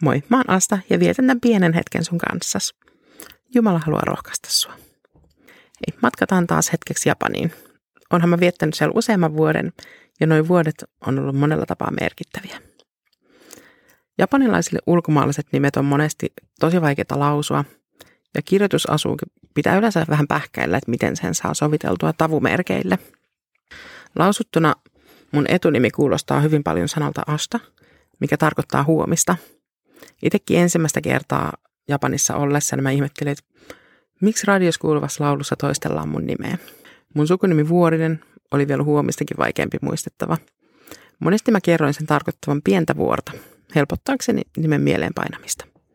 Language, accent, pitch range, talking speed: Finnish, native, 145-175 Hz, 130 wpm